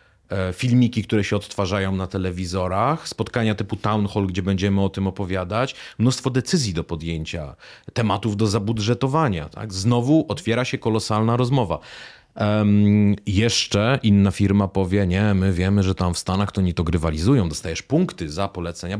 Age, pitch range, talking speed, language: 30-49, 95-115 Hz, 145 wpm, Polish